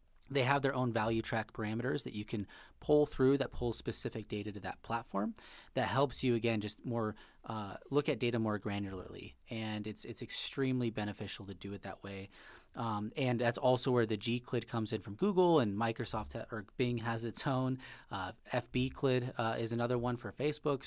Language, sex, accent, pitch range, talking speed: English, male, American, 110-130 Hz, 195 wpm